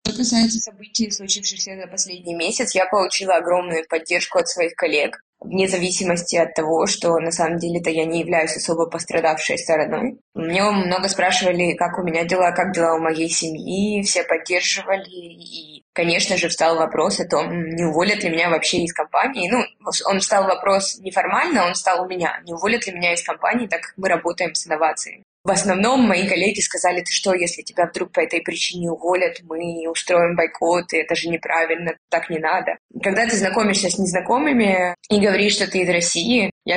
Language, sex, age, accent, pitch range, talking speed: Russian, female, 20-39, native, 165-195 Hz, 185 wpm